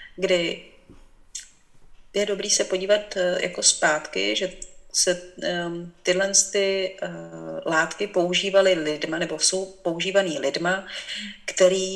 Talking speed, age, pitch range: 95 wpm, 30-49, 180-200 Hz